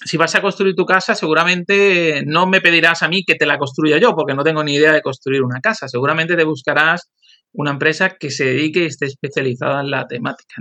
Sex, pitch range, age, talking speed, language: male, 145-195 Hz, 40-59, 225 wpm, Spanish